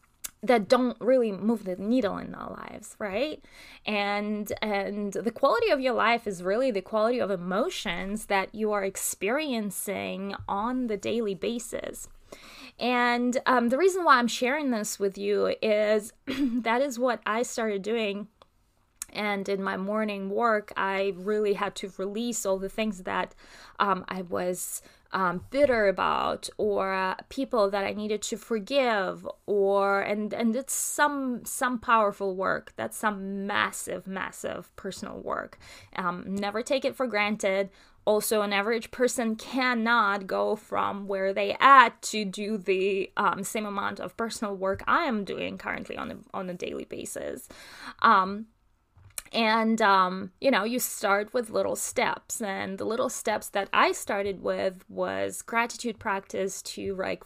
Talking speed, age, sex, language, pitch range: 155 wpm, 20-39, female, English, 195-235 Hz